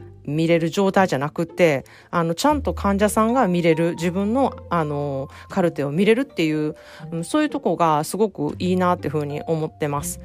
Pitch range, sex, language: 155-210 Hz, female, Japanese